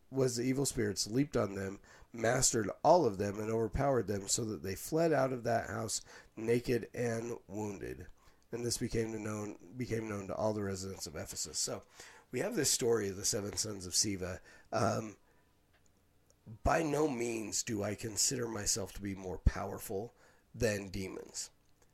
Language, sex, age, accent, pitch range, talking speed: English, male, 50-69, American, 95-115 Hz, 170 wpm